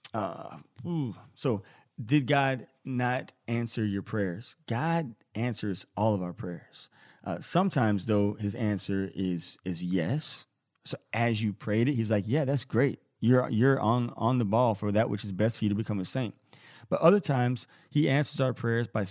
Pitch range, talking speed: 105-135 Hz, 180 wpm